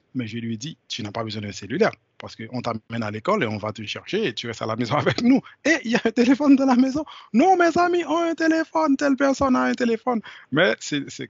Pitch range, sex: 115-140 Hz, male